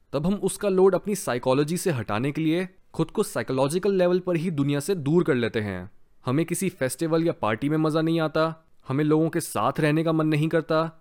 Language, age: Hindi, 20-39